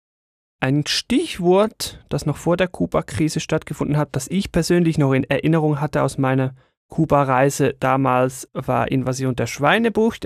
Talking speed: 140 wpm